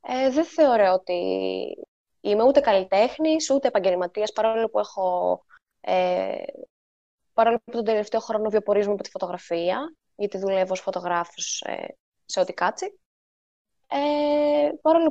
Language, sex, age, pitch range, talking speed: Greek, female, 20-39, 190-255 Hz, 120 wpm